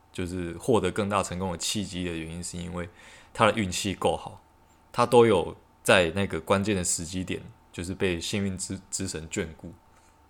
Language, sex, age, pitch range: Chinese, male, 20-39, 85-105 Hz